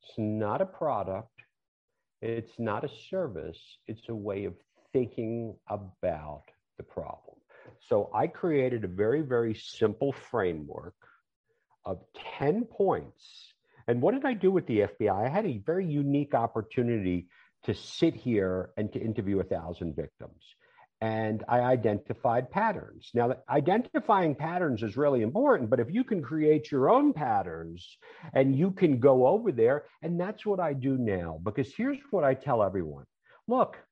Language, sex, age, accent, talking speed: English, male, 50-69, American, 150 wpm